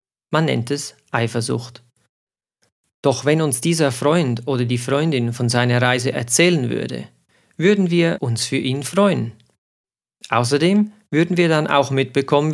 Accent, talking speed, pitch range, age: German, 140 wpm, 120-155 Hz, 40-59